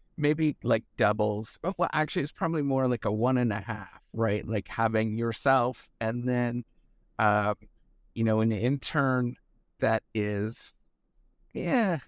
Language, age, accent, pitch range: English, 50-69, American, 105-130 Hz